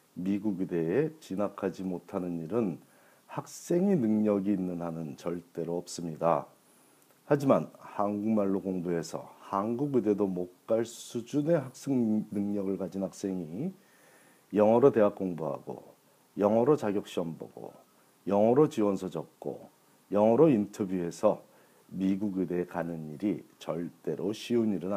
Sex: male